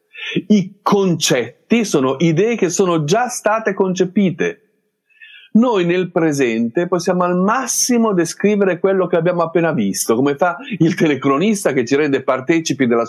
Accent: native